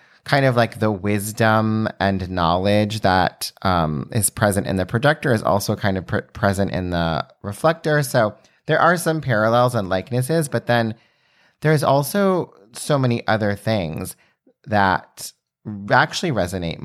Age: 30-49